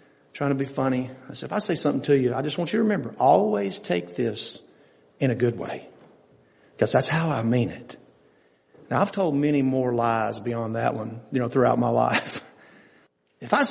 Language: English